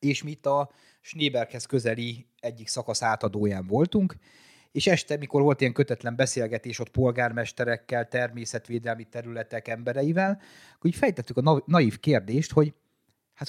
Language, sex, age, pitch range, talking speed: Hungarian, male, 30-49, 115-145 Hz, 135 wpm